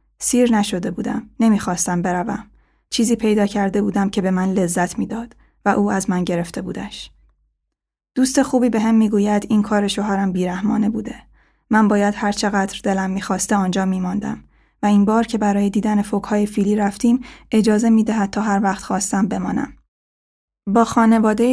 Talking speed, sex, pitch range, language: 155 wpm, female, 190-220 Hz, Persian